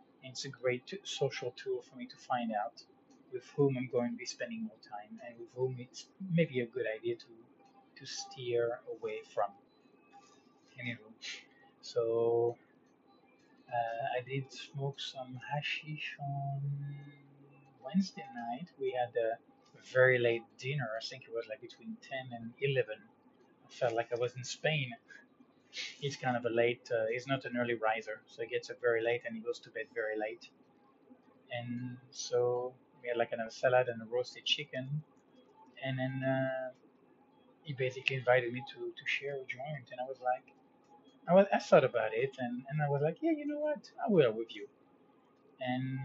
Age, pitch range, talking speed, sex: 20-39, 120-170 Hz, 175 wpm, male